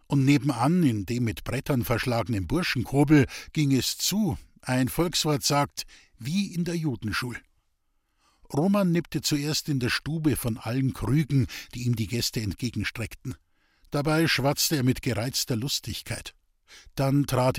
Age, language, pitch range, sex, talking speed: 50-69, German, 115-155 Hz, male, 135 wpm